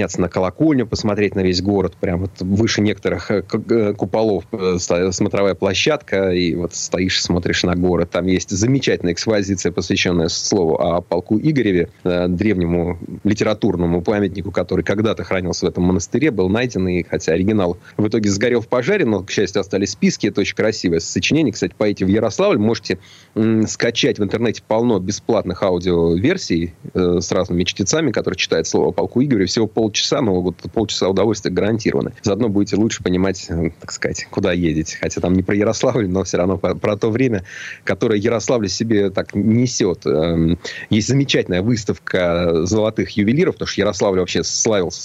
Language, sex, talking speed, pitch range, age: Russian, male, 155 wpm, 90-110 Hz, 30-49